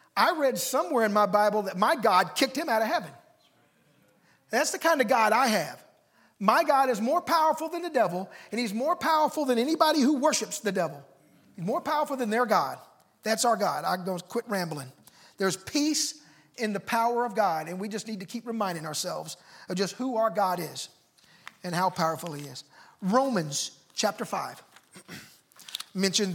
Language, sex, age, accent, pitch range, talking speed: English, male, 40-59, American, 180-275 Hz, 190 wpm